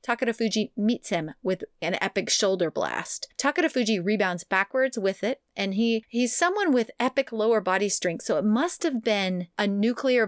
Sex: female